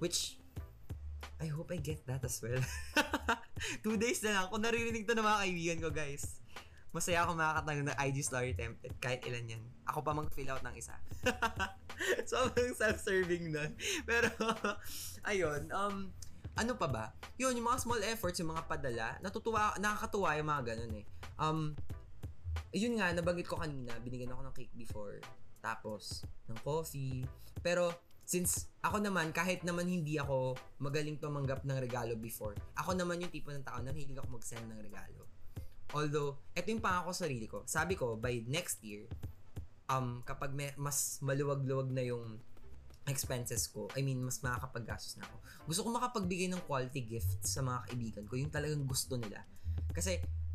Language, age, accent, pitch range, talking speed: Filipino, 20-39, native, 110-170 Hz, 165 wpm